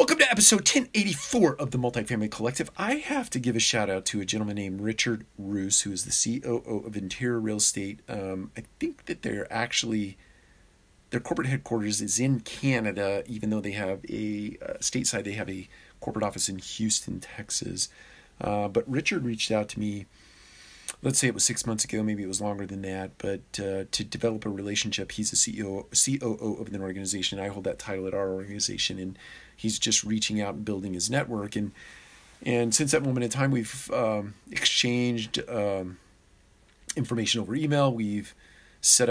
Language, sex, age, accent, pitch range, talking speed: English, male, 40-59, American, 100-120 Hz, 185 wpm